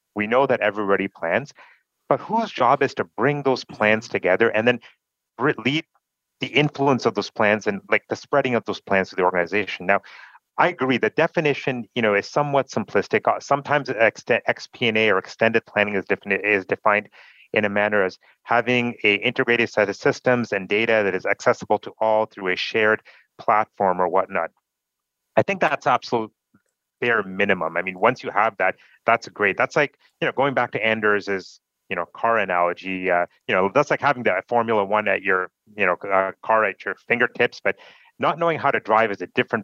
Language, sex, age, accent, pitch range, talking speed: English, male, 30-49, American, 100-130 Hz, 190 wpm